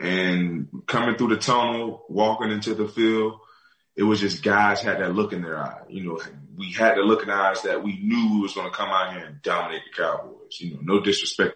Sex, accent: male, American